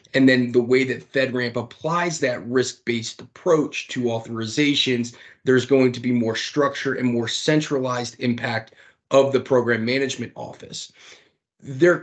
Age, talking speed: 30-49, 140 wpm